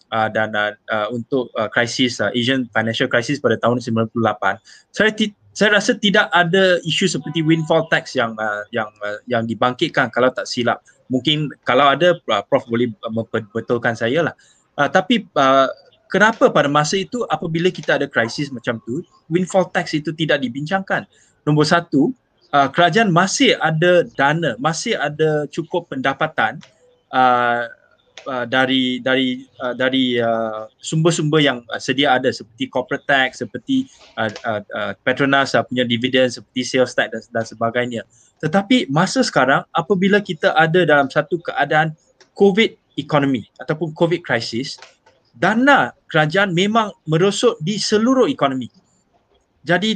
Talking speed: 145 wpm